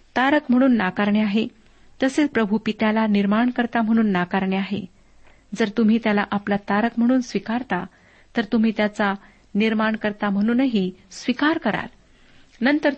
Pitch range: 200-235 Hz